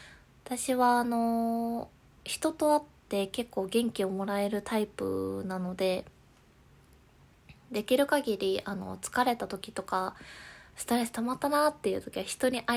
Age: 20-39